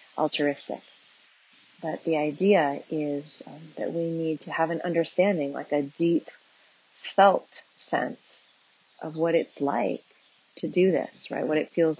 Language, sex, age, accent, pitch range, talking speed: English, female, 30-49, American, 145-165 Hz, 145 wpm